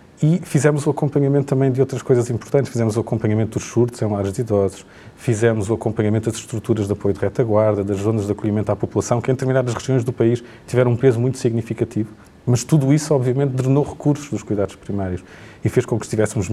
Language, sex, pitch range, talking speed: Portuguese, male, 105-125 Hz, 210 wpm